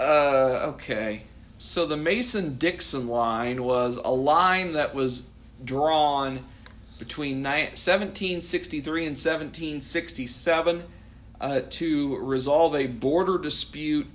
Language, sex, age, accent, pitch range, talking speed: English, male, 50-69, American, 115-150 Hz, 95 wpm